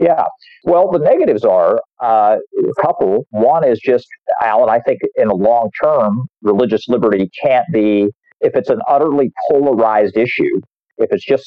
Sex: male